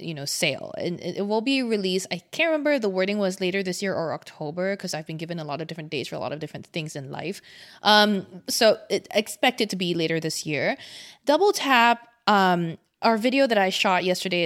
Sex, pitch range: female, 175-225 Hz